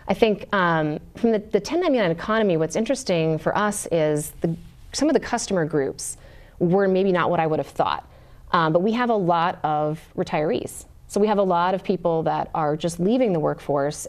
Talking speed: 200 wpm